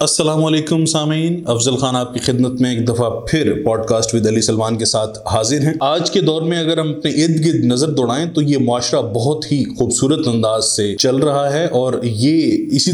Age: 20-39